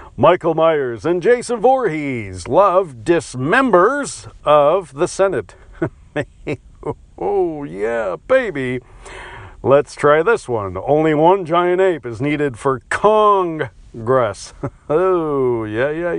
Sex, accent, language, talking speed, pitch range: male, American, English, 105 wpm, 125-180 Hz